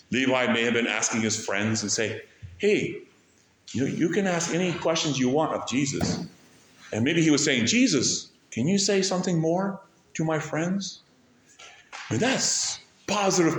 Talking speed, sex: 160 wpm, male